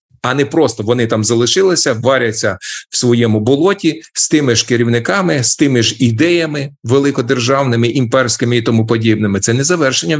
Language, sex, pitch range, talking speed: Ukrainian, male, 110-135 Hz, 155 wpm